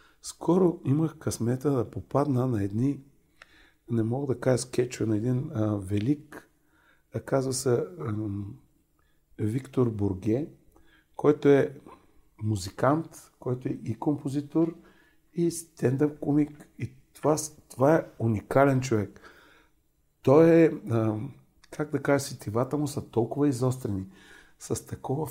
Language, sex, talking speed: Bulgarian, male, 125 wpm